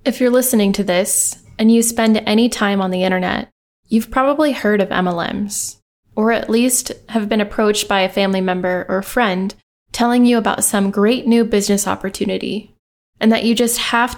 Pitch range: 200-230 Hz